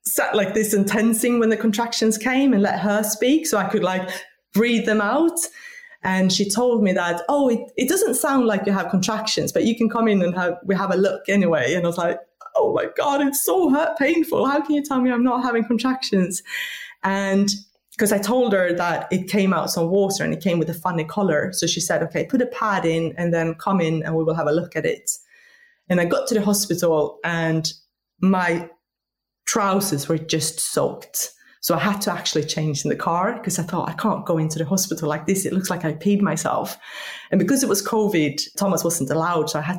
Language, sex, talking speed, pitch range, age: English, female, 230 wpm, 170-225 Hz, 20-39